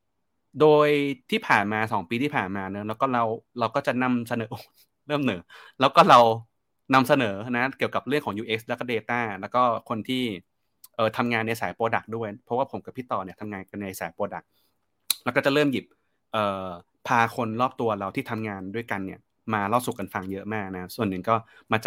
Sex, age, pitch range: male, 20-39, 100-125 Hz